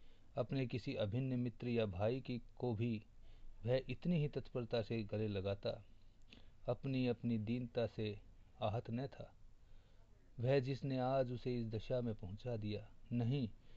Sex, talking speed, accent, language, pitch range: male, 145 wpm, native, Hindi, 105-125 Hz